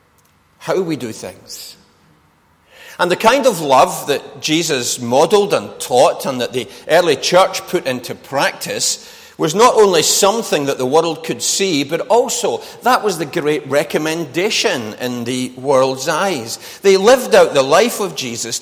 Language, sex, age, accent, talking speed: English, male, 40-59, British, 160 wpm